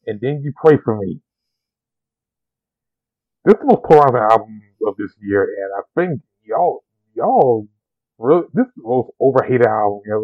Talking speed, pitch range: 180 wpm, 120-150 Hz